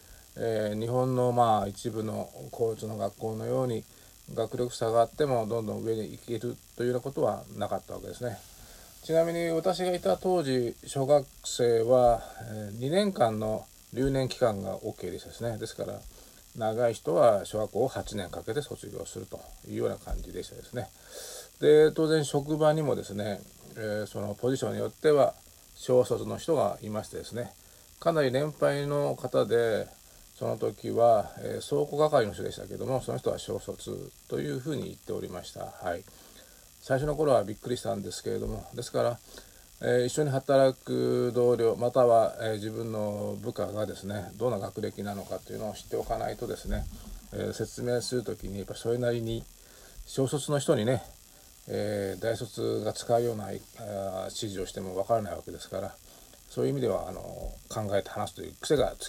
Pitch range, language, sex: 105-130 Hz, Japanese, male